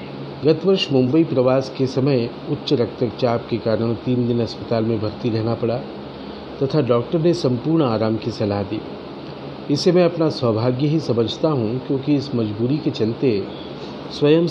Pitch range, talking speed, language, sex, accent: 110-140 Hz, 155 wpm, Hindi, male, native